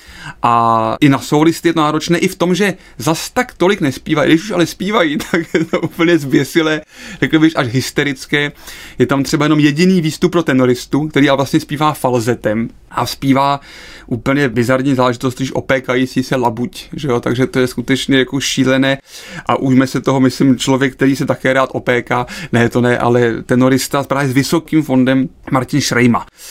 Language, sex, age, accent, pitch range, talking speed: Czech, male, 30-49, native, 130-160 Hz, 175 wpm